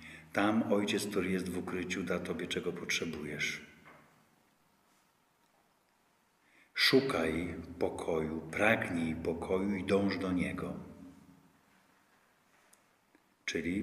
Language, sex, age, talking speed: Polish, male, 50-69, 80 wpm